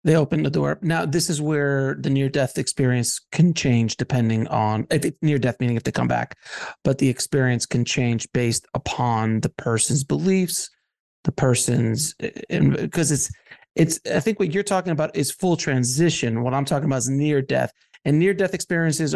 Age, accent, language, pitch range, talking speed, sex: 40-59, American, English, 125-165 Hz, 170 wpm, male